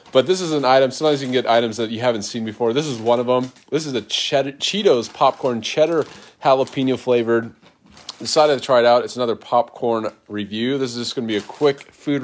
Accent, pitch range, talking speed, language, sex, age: American, 115-140 Hz, 225 wpm, English, male, 30-49